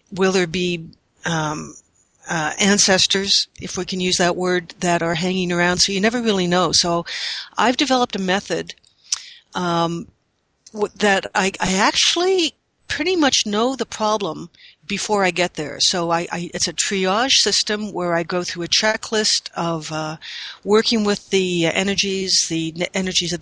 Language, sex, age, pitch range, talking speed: English, female, 60-79, 170-195 Hz, 160 wpm